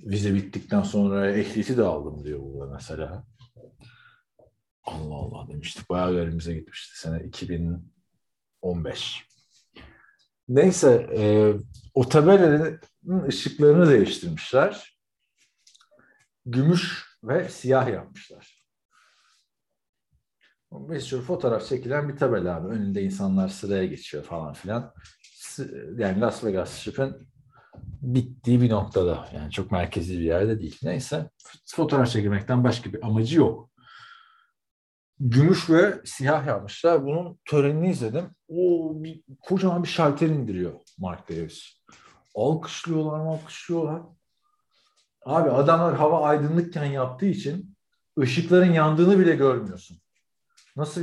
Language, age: Turkish, 50-69